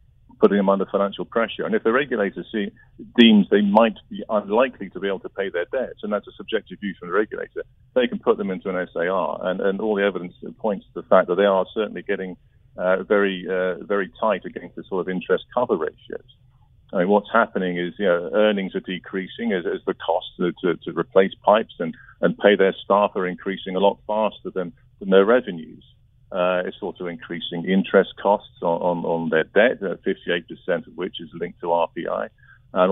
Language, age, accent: English, 50-69, British